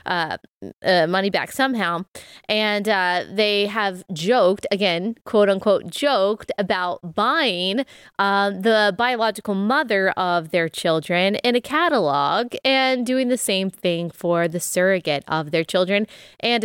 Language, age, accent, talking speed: English, 20-39, American, 135 wpm